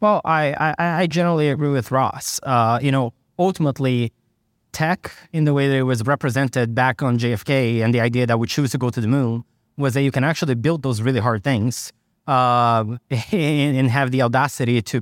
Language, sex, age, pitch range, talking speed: English, male, 20-39, 125-150 Hz, 200 wpm